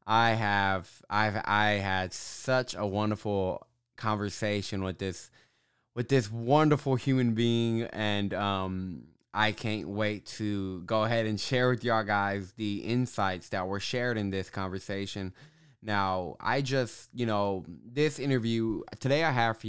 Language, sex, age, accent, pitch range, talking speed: English, male, 20-39, American, 105-135 Hz, 145 wpm